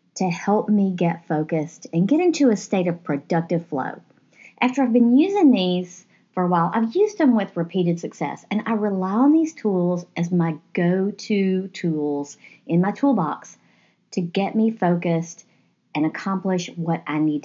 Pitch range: 165-220 Hz